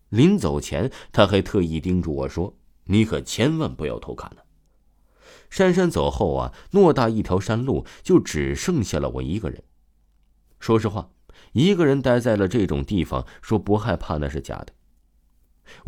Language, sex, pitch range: Chinese, male, 75-120 Hz